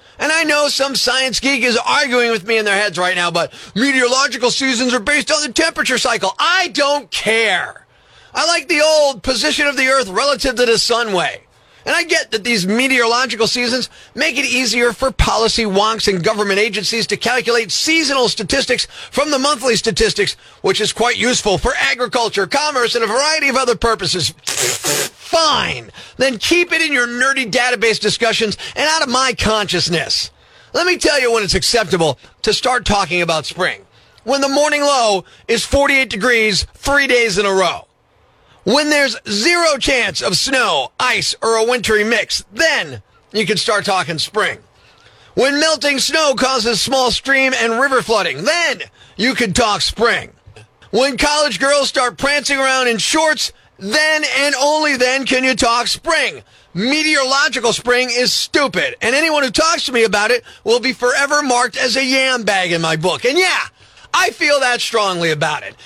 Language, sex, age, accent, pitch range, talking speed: English, male, 40-59, American, 220-285 Hz, 175 wpm